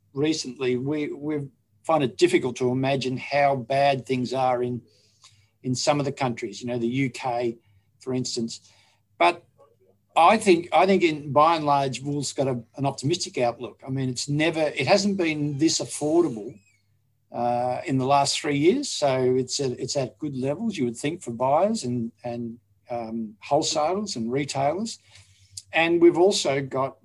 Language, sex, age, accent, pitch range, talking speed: English, male, 50-69, Australian, 120-145 Hz, 170 wpm